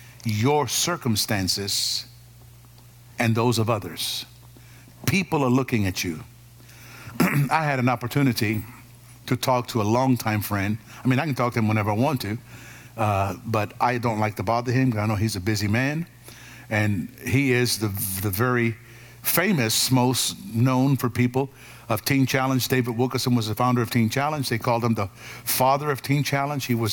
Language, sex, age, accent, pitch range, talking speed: English, male, 60-79, American, 115-130 Hz, 175 wpm